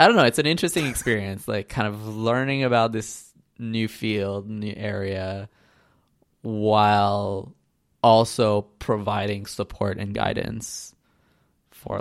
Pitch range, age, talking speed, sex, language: 100-115 Hz, 20-39, 120 wpm, male, English